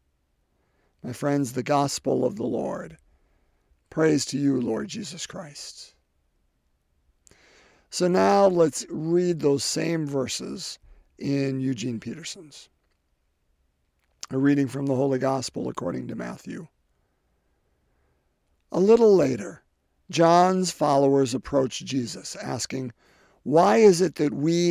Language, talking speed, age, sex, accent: English, 110 wpm, 50-69, male, American